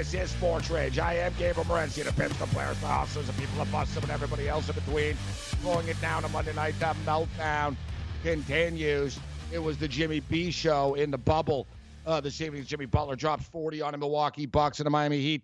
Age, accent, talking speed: 60-79, American, 220 wpm